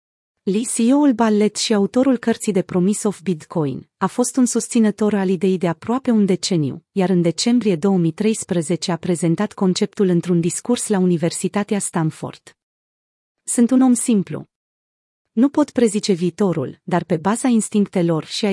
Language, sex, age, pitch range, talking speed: Romanian, female, 30-49, 175-230 Hz, 150 wpm